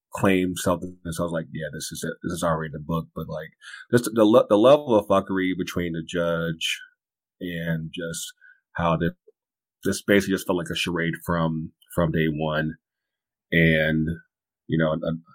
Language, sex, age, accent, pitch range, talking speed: English, male, 30-49, American, 85-105 Hz, 175 wpm